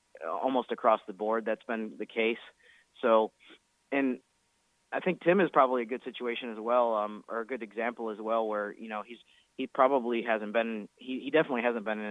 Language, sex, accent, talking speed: English, male, American, 205 wpm